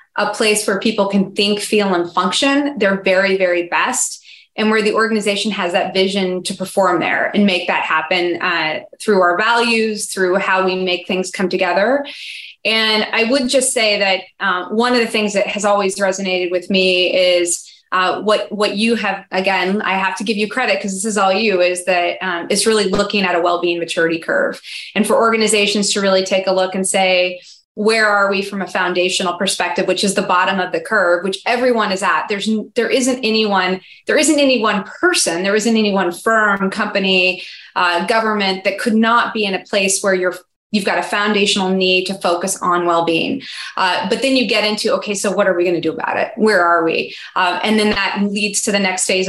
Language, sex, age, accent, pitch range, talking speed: English, female, 20-39, American, 185-215 Hz, 215 wpm